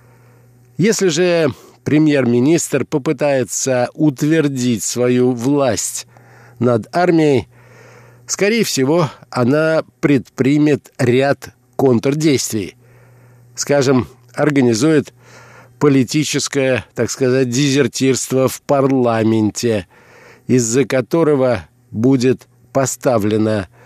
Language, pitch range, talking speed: Russian, 120-145 Hz, 70 wpm